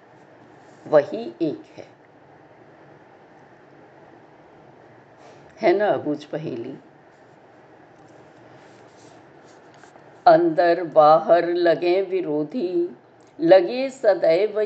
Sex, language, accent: female, Hindi, native